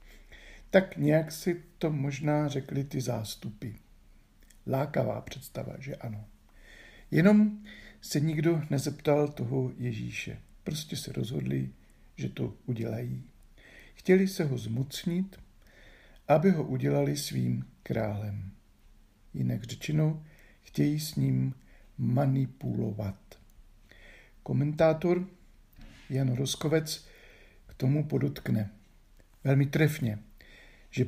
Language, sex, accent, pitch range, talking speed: Czech, male, native, 105-150 Hz, 95 wpm